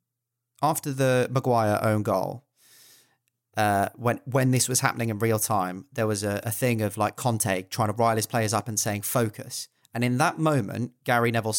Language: English